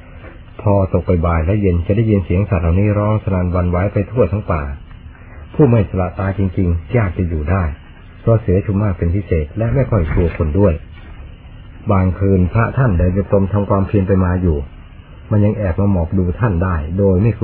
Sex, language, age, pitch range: male, Thai, 60-79, 85-100 Hz